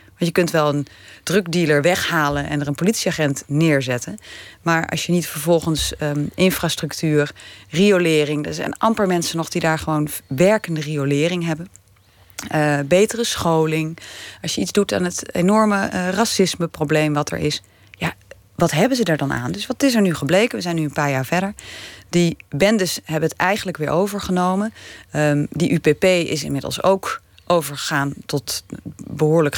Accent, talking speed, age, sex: Dutch, 170 wpm, 30-49, female